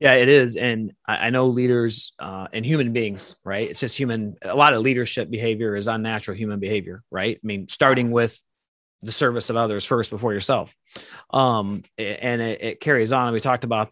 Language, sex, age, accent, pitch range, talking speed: English, male, 30-49, American, 110-125 Hz, 200 wpm